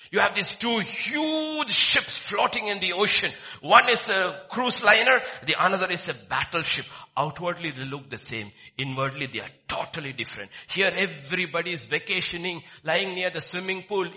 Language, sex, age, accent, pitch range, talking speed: English, male, 60-79, Indian, 120-190 Hz, 165 wpm